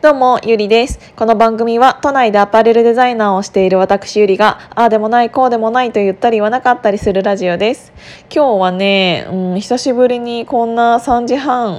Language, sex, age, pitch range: Japanese, female, 20-39, 190-240 Hz